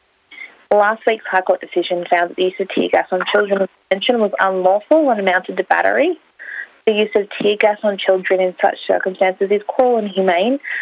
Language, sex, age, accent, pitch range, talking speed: English, female, 20-39, Australian, 180-215 Hz, 200 wpm